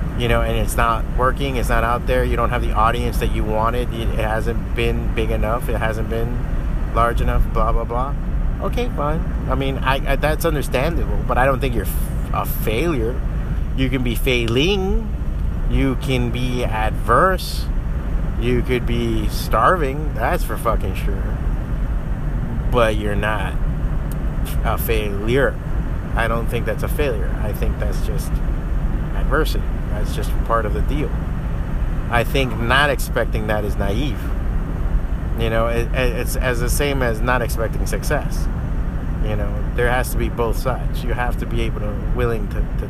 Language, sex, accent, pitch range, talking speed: English, male, American, 110-130 Hz, 165 wpm